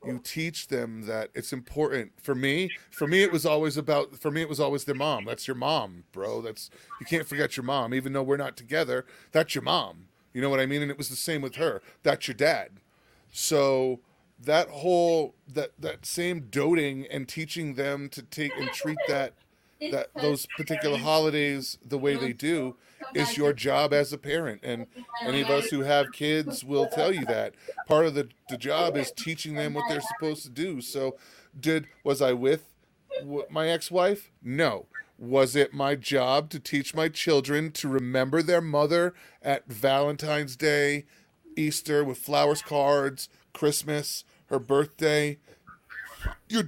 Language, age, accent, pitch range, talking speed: English, 30-49, American, 135-155 Hz, 175 wpm